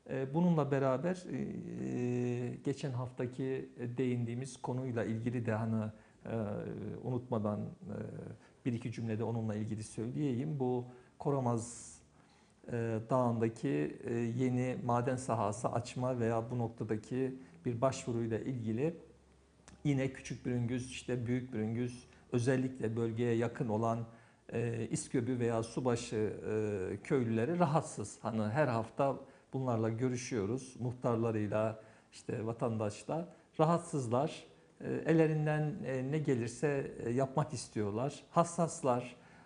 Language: Turkish